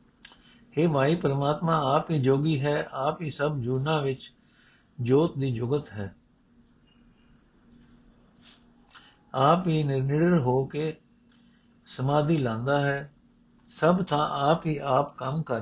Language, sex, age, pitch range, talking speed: Punjabi, male, 60-79, 130-160 Hz, 120 wpm